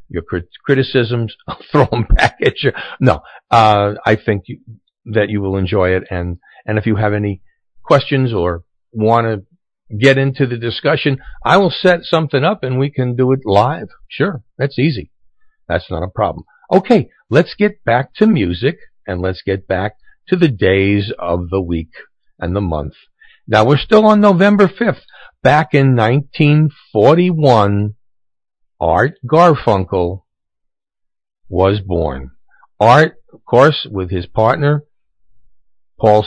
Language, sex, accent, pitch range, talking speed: English, male, American, 100-145 Hz, 145 wpm